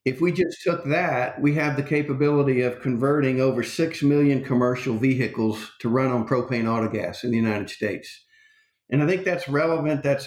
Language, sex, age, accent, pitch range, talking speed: English, male, 50-69, American, 125-155 Hz, 180 wpm